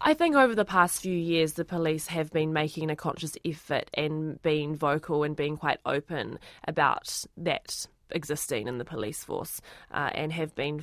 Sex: female